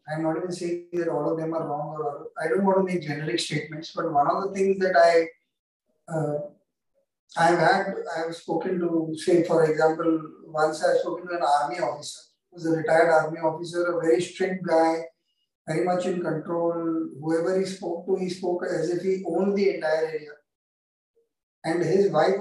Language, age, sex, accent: English, 20-39, male, Indian